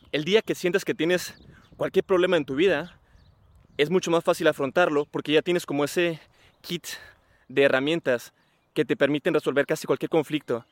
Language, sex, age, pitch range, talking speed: Spanish, male, 20-39, 140-170 Hz, 175 wpm